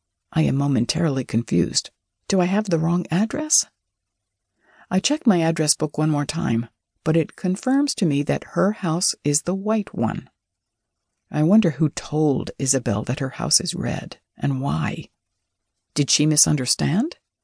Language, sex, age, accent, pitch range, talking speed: English, female, 60-79, American, 130-175 Hz, 155 wpm